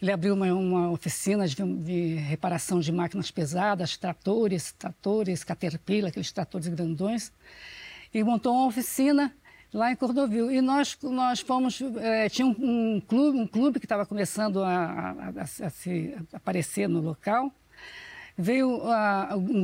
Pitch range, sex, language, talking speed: 190-255 Hz, female, Portuguese, 130 wpm